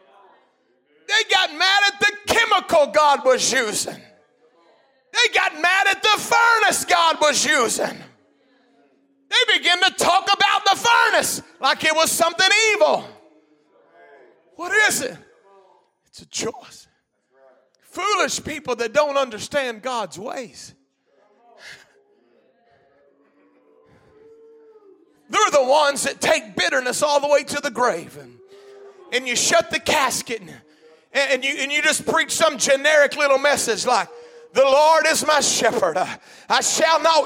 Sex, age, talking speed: male, 30-49, 130 wpm